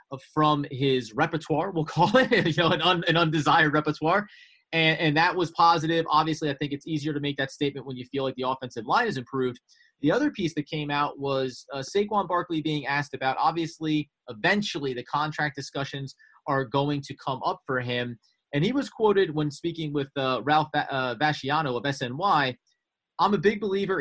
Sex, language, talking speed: male, English, 195 wpm